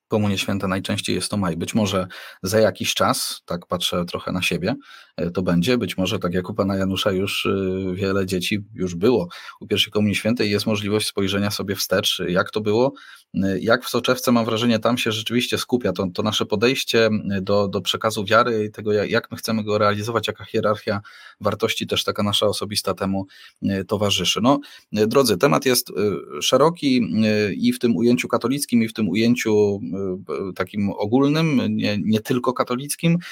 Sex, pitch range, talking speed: male, 100-120 Hz, 175 wpm